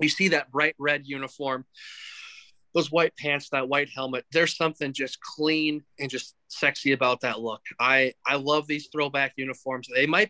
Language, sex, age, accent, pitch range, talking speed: English, male, 20-39, American, 125-150 Hz, 175 wpm